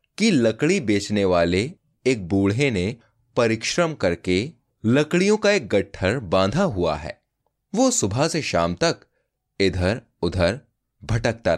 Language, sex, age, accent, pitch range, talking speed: Hindi, male, 30-49, native, 90-140 Hz, 125 wpm